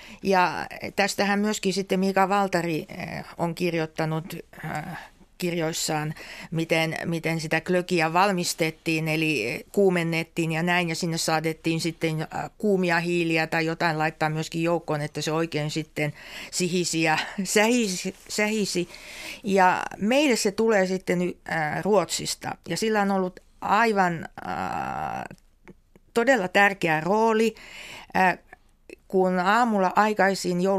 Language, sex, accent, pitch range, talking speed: Finnish, female, native, 160-195 Hz, 105 wpm